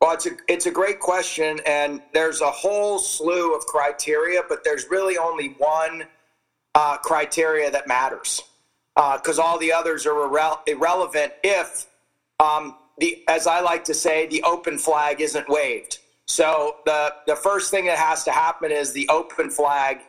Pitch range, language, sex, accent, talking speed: 145-170 Hz, English, male, American, 170 wpm